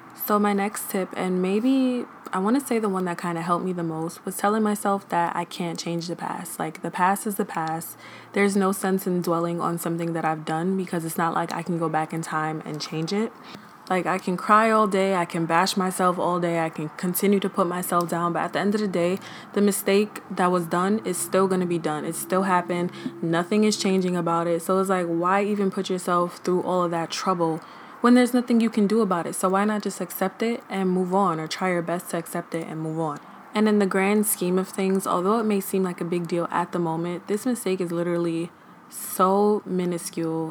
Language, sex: English, female